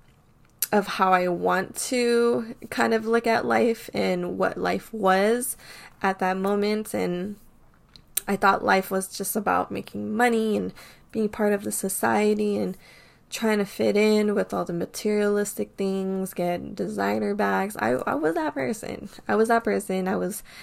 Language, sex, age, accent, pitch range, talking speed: English, female, 10-29, American, 185-215 Hz, 165 wpm